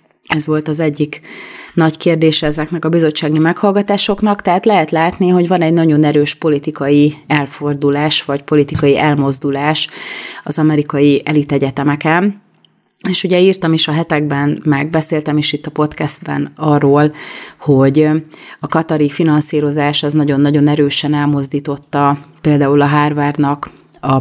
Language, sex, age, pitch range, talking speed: Hungarian, female, 30-49, 145-155 Hz, 130 wpm